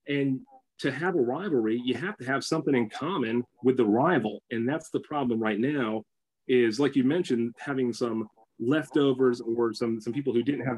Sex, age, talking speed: male, 30-49, 195 wpm